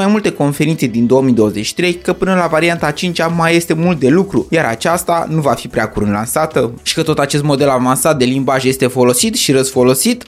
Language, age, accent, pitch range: Romanian, 20-39, native, 140-185 Hz